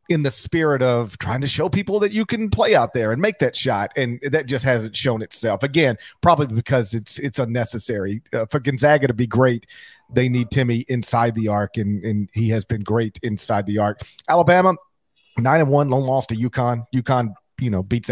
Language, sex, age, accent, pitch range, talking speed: English, male, 40-59, American, 115-180 Hz, 210 wpm